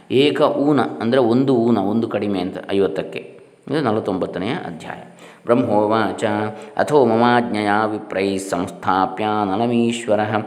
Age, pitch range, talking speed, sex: 20-39, 105-120 Hz, 105 wpm, male